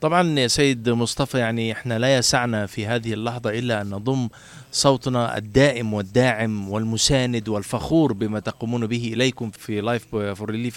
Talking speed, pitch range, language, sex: 150 wpm, 110-135 Hz, Arabic, male